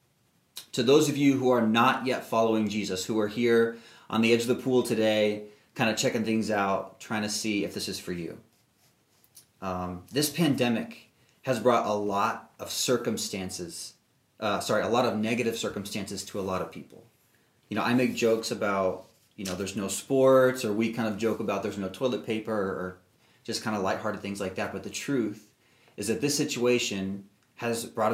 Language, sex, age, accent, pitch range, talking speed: English, male, 30-49, American, 100-120 Hz, 195 wpm